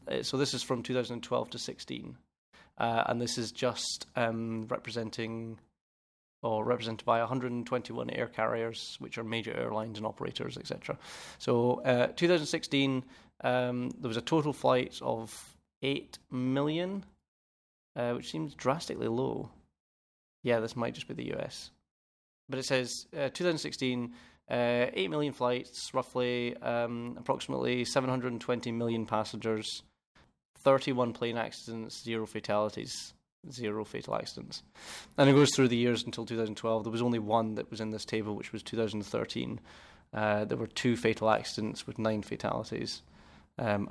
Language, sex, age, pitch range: English, male, 20-39, 110-125 Hz